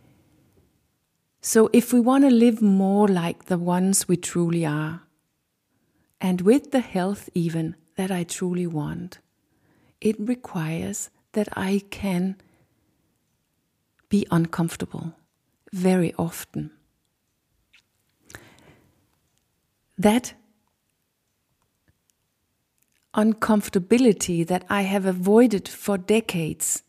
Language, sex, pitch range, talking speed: English, female, 175-220 Hz, 85 wpm